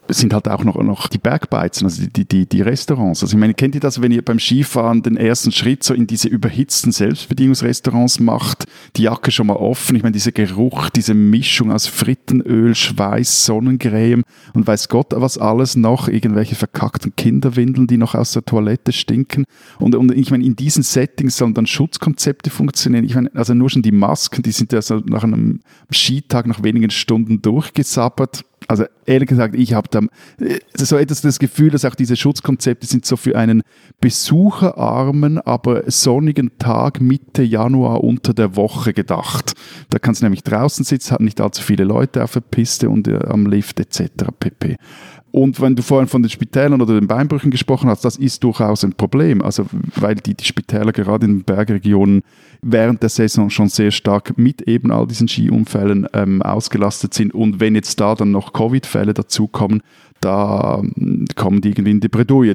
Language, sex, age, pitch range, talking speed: German, male, 50-69, 105-130 Hz, 185 wpm